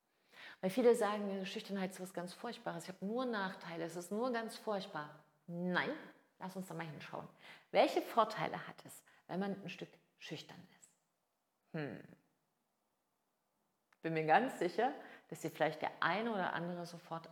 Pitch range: 170-205 Hz